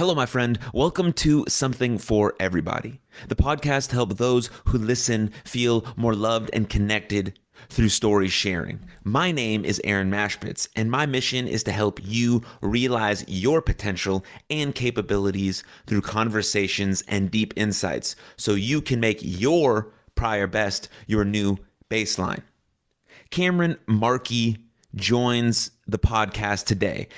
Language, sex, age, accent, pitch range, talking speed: English, male, 30-49, American, 105-130 Hz, 135 wpm